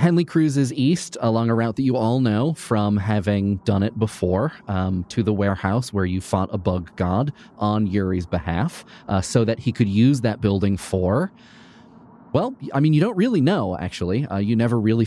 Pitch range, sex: 100-135 Hz, male